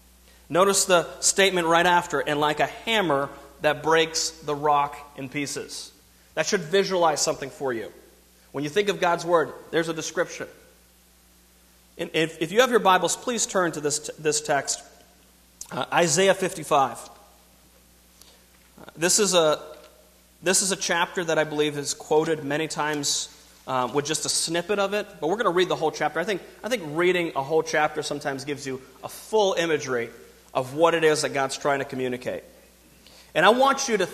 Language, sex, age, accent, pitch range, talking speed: English, male, 30-49, American, 140-180 Hz, 175 wpm